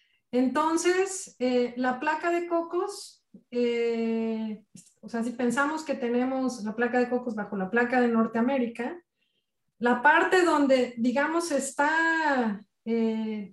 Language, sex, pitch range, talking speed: Spanish, female, 225-285 Hz, 125 wpm